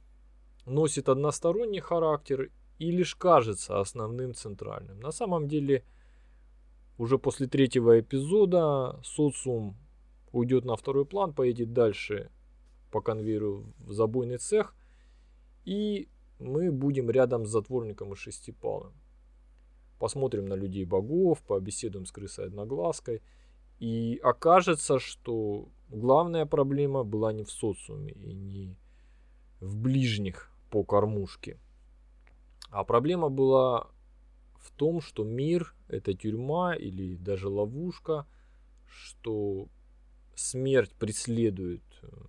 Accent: native